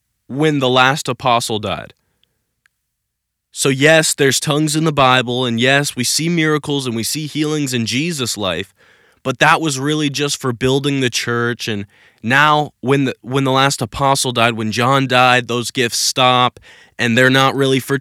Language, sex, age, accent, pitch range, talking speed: English, male, 20-39, American, 115-150 Hz, 175 wpm